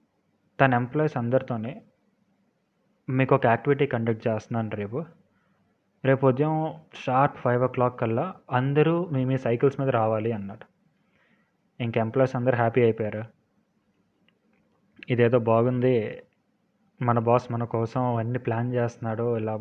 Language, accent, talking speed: Telugu, native, 115 wpm